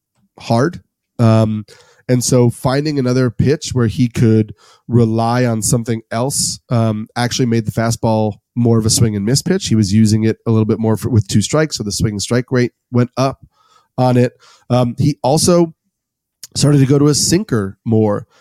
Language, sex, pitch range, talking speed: English, male, 115-135 Hz, 190 wpm